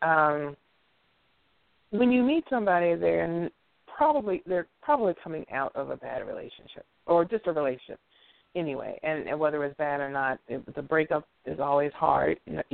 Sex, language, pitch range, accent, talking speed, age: female, English, 145-200 Hz, American, 175 wpm, 40-59